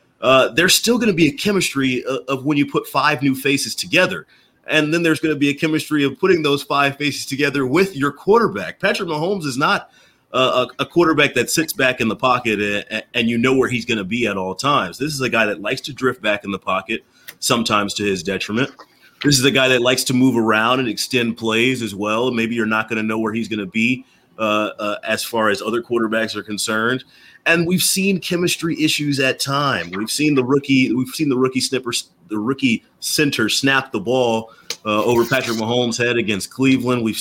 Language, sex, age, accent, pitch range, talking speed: English, male, 30-49, American, 115-150 Hz, 220 wpm